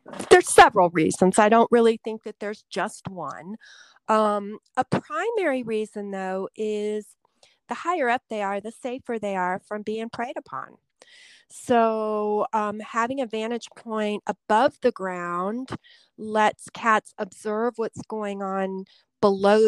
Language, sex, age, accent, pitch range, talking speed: English, female, 40-59, American, 190-235 Hz, 140 wpm